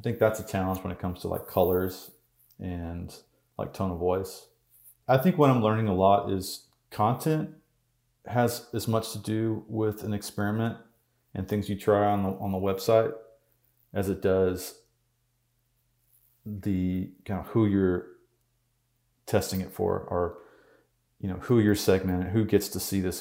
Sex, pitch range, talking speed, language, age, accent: male, 90-115 Hz, 165 wpm, English, 30-49, American